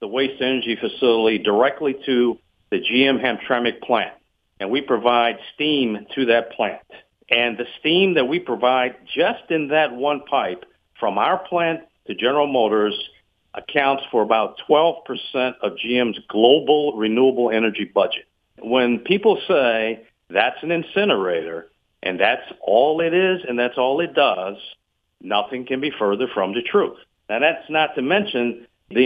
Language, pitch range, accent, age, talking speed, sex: English, 120-155 Hz, American, 50-69, 150 wpm, male